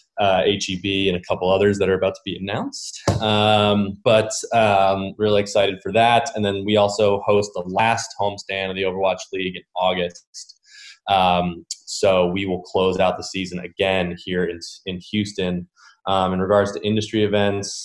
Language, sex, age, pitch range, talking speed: English, male, 20-39, 90-100 Hz, 180 wpm